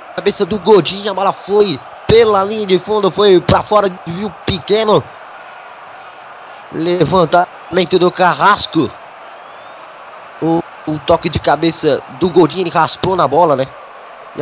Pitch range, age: 125-165 Hz, 20-39